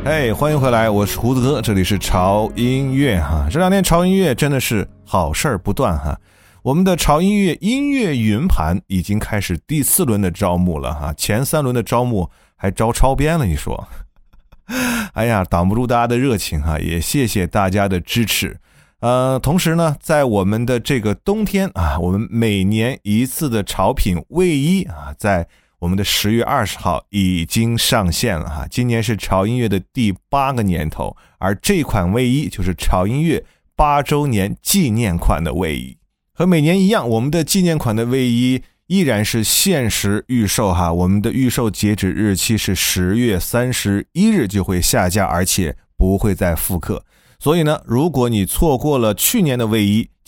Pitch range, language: 95-135 Hz, Chinese